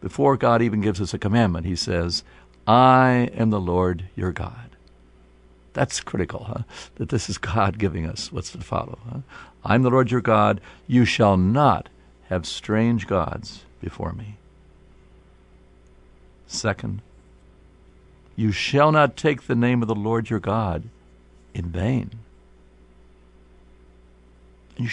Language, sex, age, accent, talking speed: English, male, 60-79, American, 130 wpm